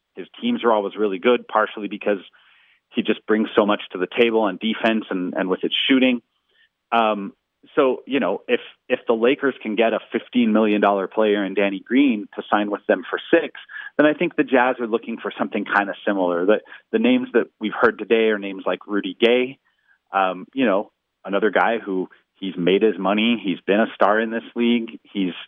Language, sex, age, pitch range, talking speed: English, male, 40-59, 105-125 Hz, 205 wpm